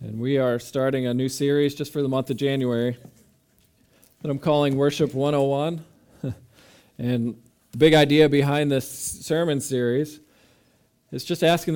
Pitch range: 125-145 Hz